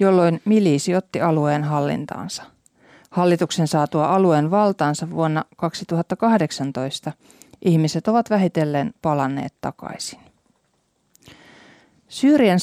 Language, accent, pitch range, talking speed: Finnish, native, 155-200 Hz, 80 wpm